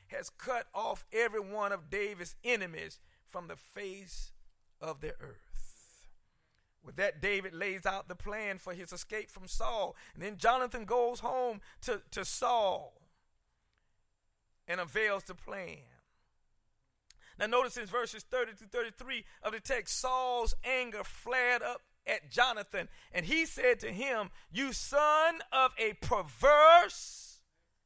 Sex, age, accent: male, 40-59, American